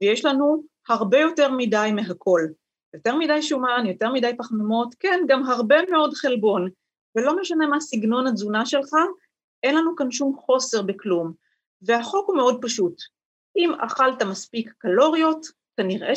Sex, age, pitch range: female, 30-49, 210-280 Hz